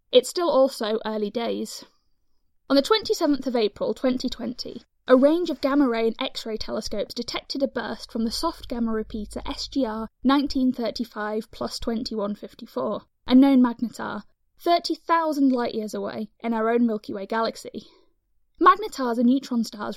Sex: female